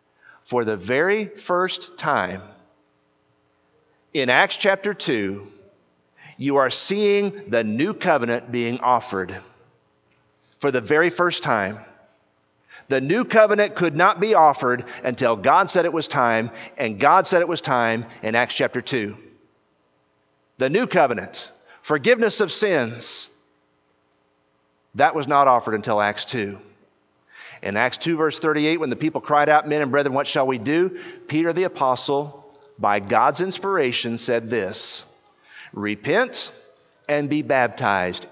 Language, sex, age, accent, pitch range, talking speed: English, male, 40-59, American, 100-155 Hz, 135 wpm